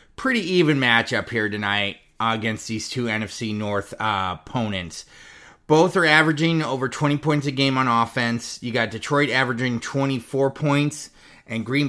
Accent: American